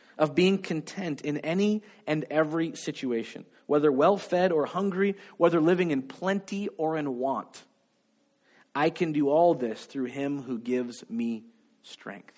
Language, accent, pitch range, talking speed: English, American, 155-230 Hz, 145 wpm